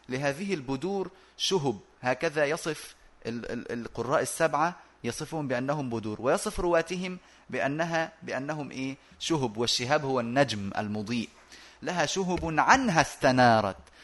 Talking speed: 105 wpm